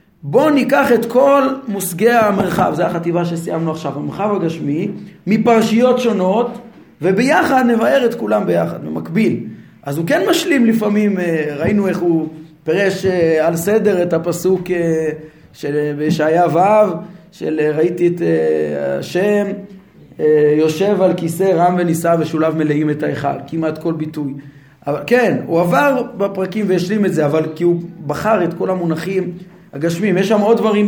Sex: male